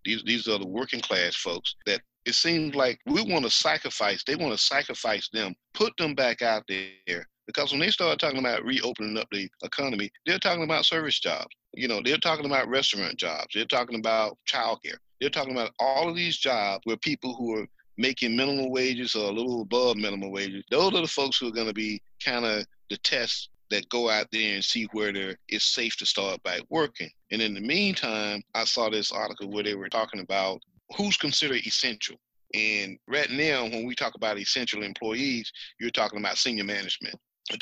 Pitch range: 105-130 Hz